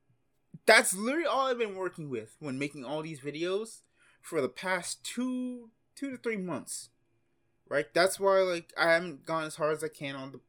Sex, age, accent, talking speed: male, 20-39, American, 195 wpm